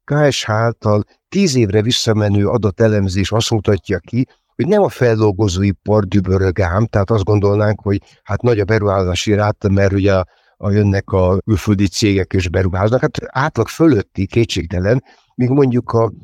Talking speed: 140 wpm